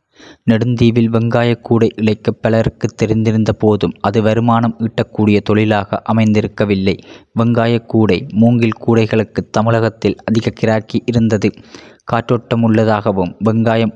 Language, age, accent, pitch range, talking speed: Tamil, 20-39, native, 110-115 Hz, 95 wpm